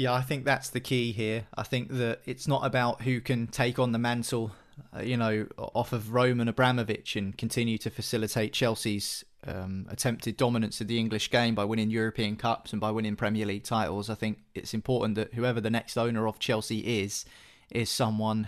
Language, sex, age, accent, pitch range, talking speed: English, male, 20-39, British, 105-120 Hz, 200 wpm